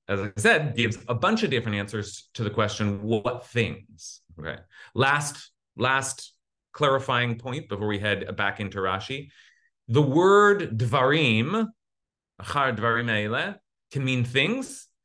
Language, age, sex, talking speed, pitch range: English, 30-49, male, 130 wpm, 105-140 Hz